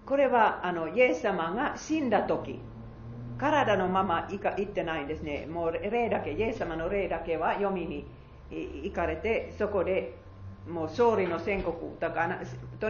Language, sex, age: Japanese, female, 40-59